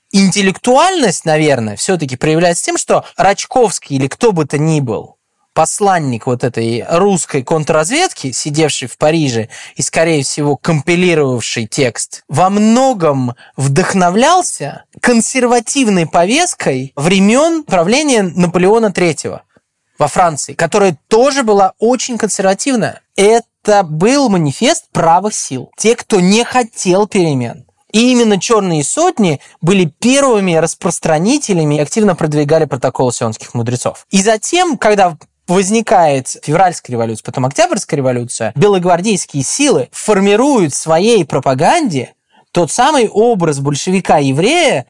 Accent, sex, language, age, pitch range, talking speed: native, male, Russian, 20-39, 150-220 Hz, 110 wpm